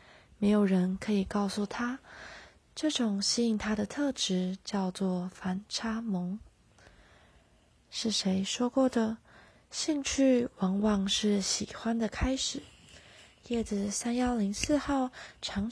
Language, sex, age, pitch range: Chinese, female, 20-39, 200-235 Hz